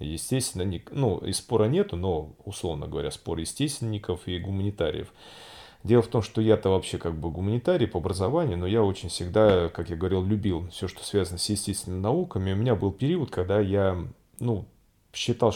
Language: Russian